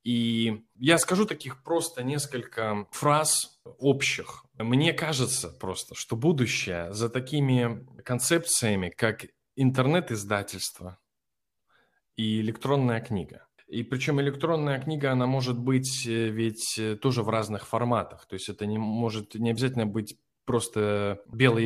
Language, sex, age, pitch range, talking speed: Russian, male, 20-39, 115-140 Hz, 120 wpm